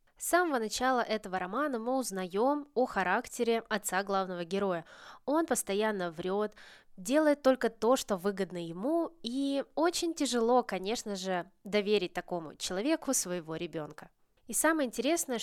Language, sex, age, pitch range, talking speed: Russian, female, 20-39, 180-235 Hz, 130 wpm